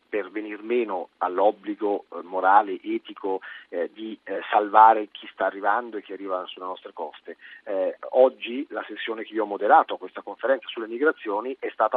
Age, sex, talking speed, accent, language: 40-59, male, 170 wpm, native, Italian